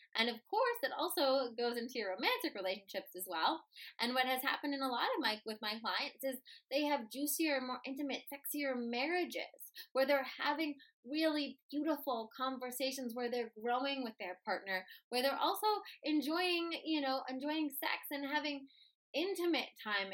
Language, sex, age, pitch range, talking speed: English, female, 20-39, 245-305 Hz, 165 wpm